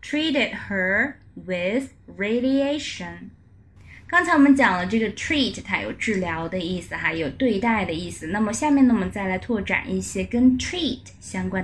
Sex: female